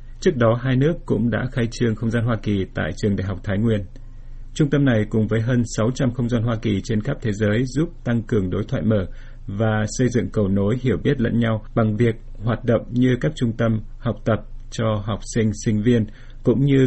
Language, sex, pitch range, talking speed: Vietnamese, male, 105-120 Hz, 230 wpm